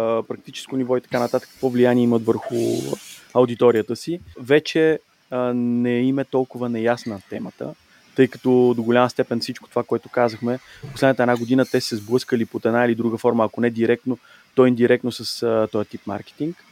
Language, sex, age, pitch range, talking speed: Bulgarian, male, 30-49, 120-140 Hz, 170 wpm